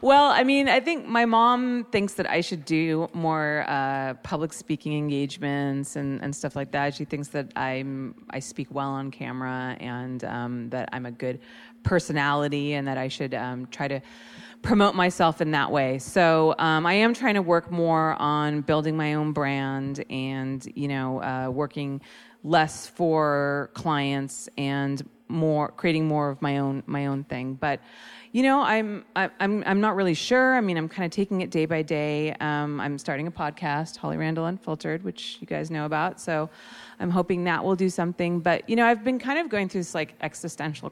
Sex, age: female, 30-49